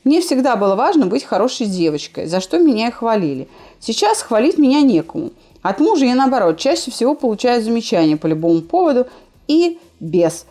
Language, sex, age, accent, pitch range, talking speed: Russian, female, 30-49, native, 185-275 Hz, 165 wpm